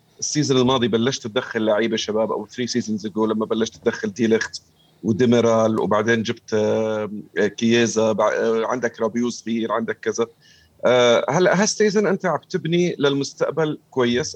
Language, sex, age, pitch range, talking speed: Arabic, male, 40-59, 110-145 Hz, 125 wpm